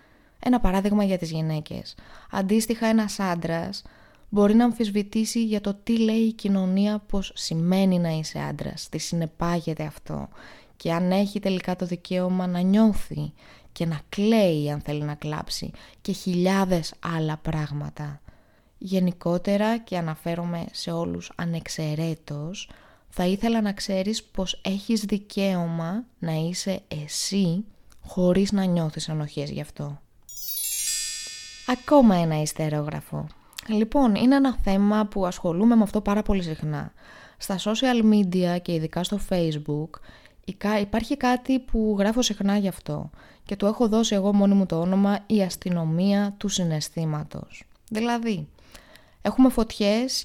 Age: 20-39